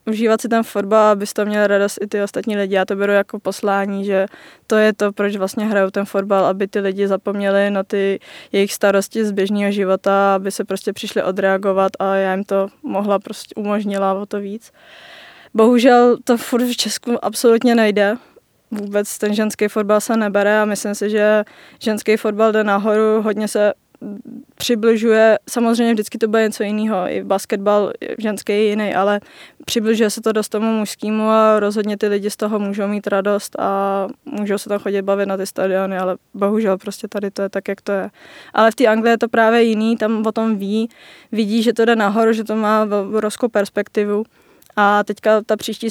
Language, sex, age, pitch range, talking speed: Czech, female, 20-39, 200-220 Hz, 195 wpm